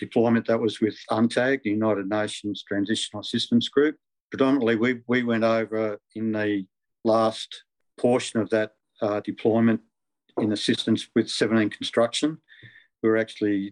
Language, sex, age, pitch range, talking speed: English, male, 50-69, 105-115 Hz, 140 wpm